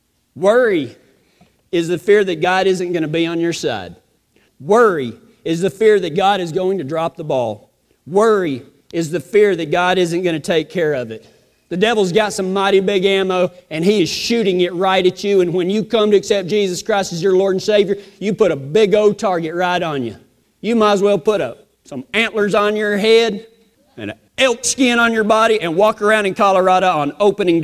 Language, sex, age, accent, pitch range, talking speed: English, male, 40-59, American, 180-220 Hz, 215 wpm